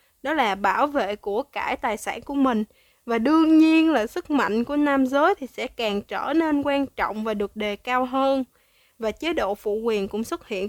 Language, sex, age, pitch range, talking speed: Vietnamese, female, 20-39, 220-300 Hz, 220 wpm